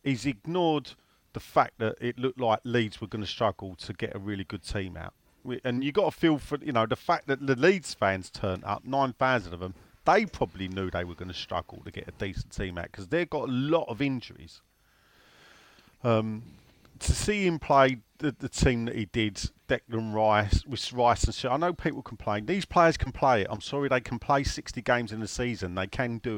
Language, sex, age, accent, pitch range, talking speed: English, male, 40-59, British, 105-135 Hz, 230 wpm